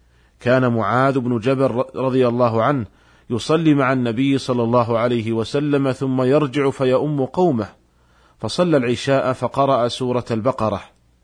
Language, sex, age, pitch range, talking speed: Arabic, male, 40-59, 115-145 Hz, 125 wpm